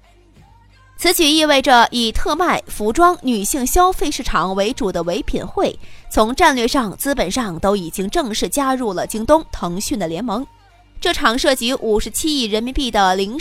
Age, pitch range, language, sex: 20-39, 205-295 Hz, Chinese, female